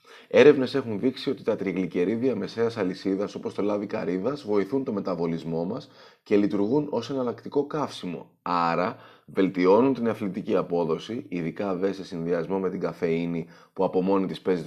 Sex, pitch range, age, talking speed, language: male, 90-130 Hz, 30-49, 155 wpm, Greek